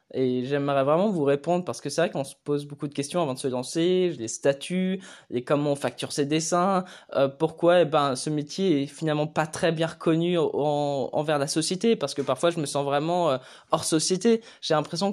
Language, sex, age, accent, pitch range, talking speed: French, male, 20-39, French, 140-175 Hz, 220 wpm